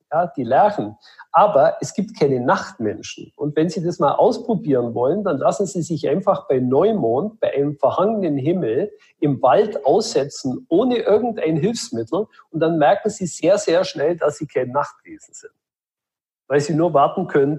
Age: 50-69